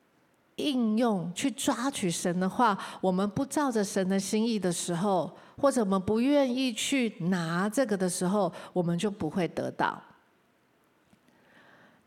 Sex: female